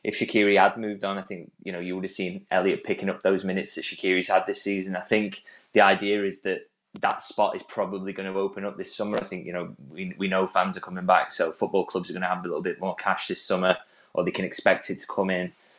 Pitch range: 95-100 Hz